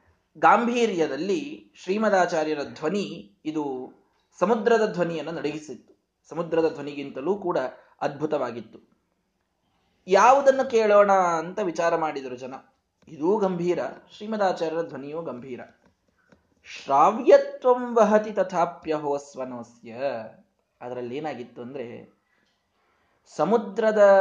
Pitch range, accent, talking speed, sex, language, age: 140-210 Hz, native, 70 wpm, male, Kannada, 20-39